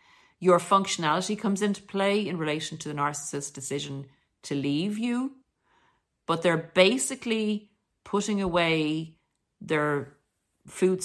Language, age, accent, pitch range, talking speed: English, 50-69, Irish, 155-205 Hz, 115 wpm